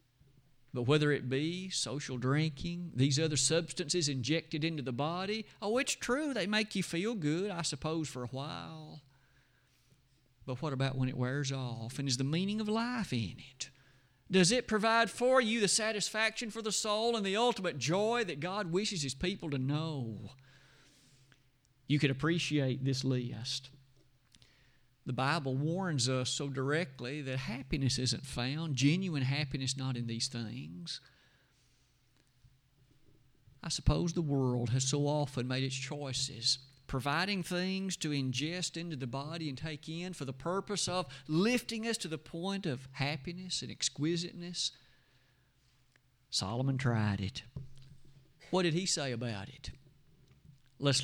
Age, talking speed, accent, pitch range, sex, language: 50-69, 150 wpm, American, 130-170 Hz, male, English